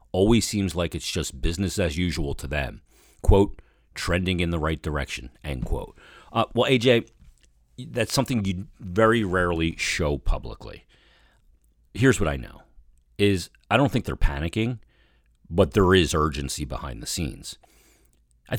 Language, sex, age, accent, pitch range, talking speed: English, male, 40-59, American, 75-105 Hz, 150 wpm